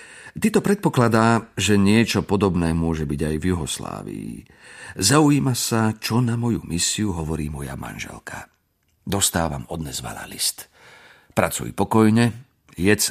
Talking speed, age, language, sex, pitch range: 115 wpm, 50-69, Slovak, male, 80-115 Hz